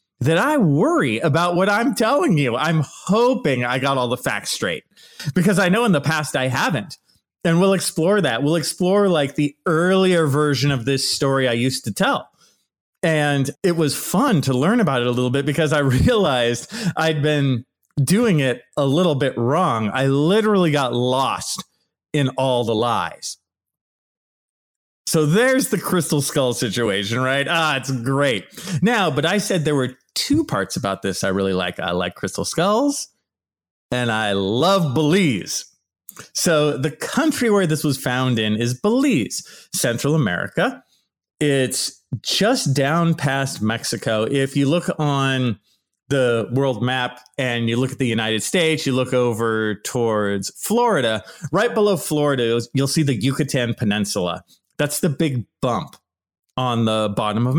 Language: English